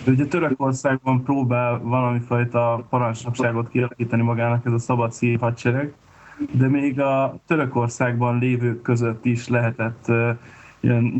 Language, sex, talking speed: Hungarian, male, 115 wpm